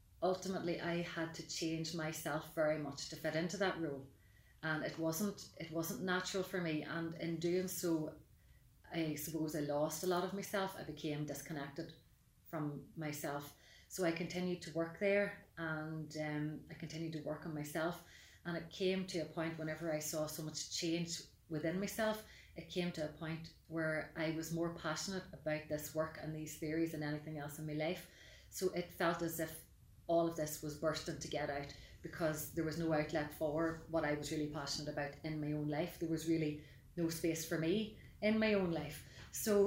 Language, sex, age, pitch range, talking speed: English, female, 30-49, 155-175 Hz, 195 wpm